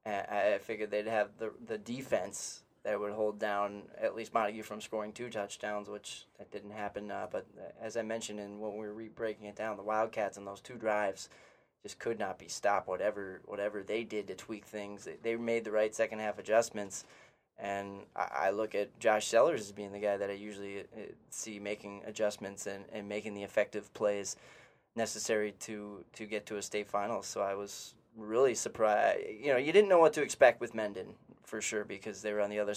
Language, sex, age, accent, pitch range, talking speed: English, male, 20-39, American, 105-110 Hz, 210 wpm